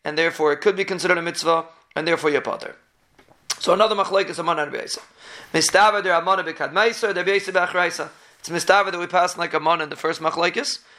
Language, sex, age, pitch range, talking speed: English, male, 30-49, 165-200 Hz, 200 wpm